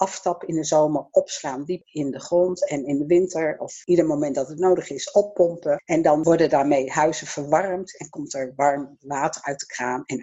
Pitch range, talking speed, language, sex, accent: 145-190 Hz, 210 wpm, Dutch, female, Dutch